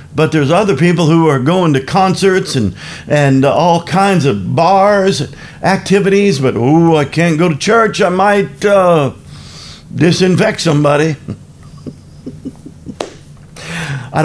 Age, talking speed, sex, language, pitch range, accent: 50-69, 125 wpm, male, English, 140-185 Hz, American